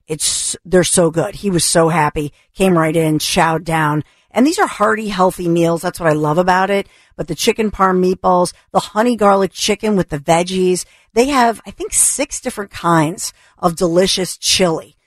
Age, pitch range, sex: 50-69, 170-215 Hz, female